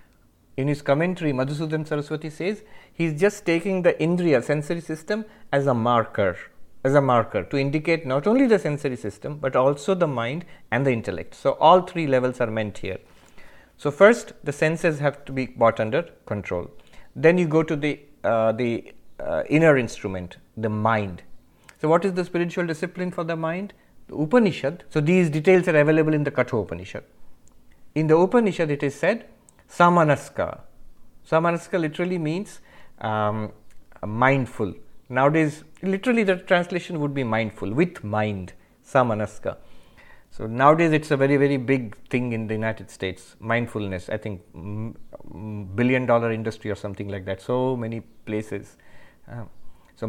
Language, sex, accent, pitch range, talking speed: English, male, Indian, 110-165 Hz, 160 wpm